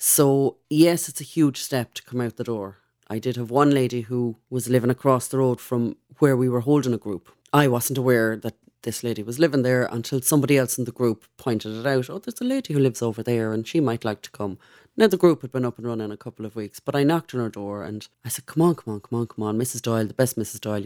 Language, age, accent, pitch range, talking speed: English, 30-49, Irish, 115-145 Hz, 275 wpm